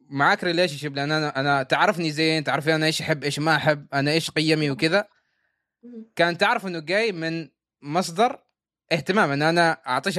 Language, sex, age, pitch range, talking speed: Arabic, male, 20-39, 135-175 Hz, 165 wpm